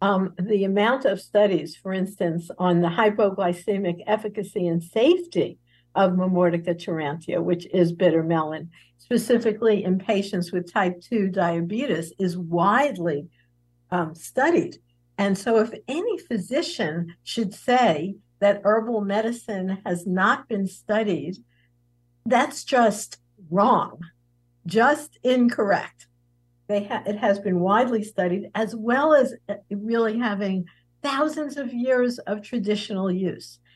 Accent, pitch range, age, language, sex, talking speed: American, 175-230 Hz, 60-79, English, female, 120 wpm